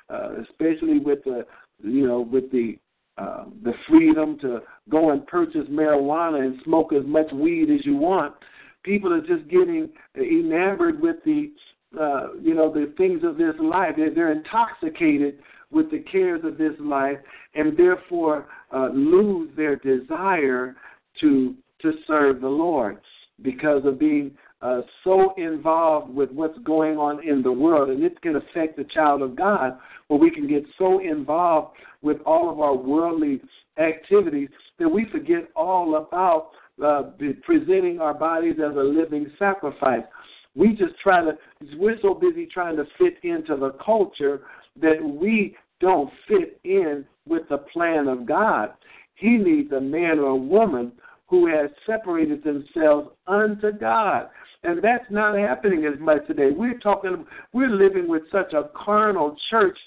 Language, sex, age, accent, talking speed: English, male, 60-79, American, 155 wpm